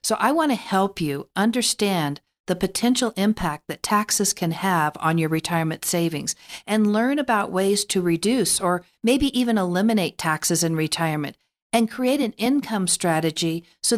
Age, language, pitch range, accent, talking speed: 50-69, English, 165-215 Hz, American, 160 wpm